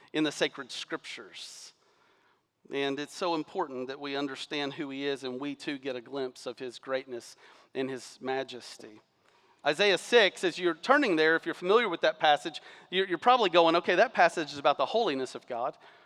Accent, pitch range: American, 140-195 Hz